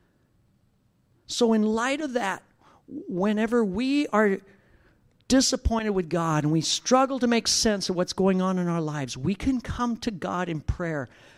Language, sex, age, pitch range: English, male, 50-69, 135-215 Hz